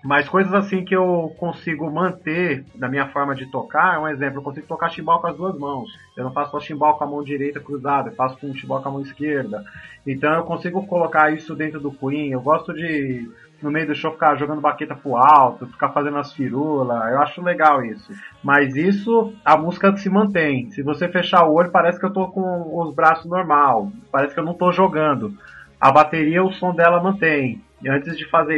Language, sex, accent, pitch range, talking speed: Portuguese, male, Brazilian, 145-185 Hz, 215 wpm